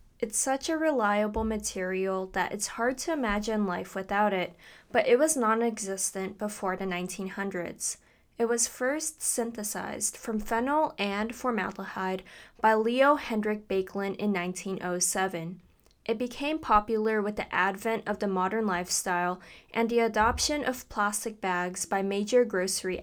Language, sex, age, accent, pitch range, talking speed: English, female, 20-39, American, 195-245 Hz, 140 wpm